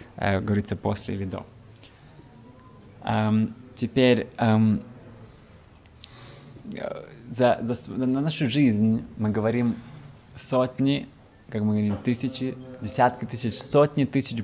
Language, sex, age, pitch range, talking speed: Russian, male, 20-39, 110-130 Hz, 95 wpm